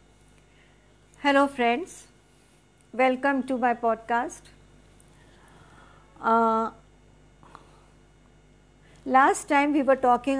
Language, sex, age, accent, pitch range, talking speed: Hindi, female, 50-69, native, 235-280 Hz, 65 wpm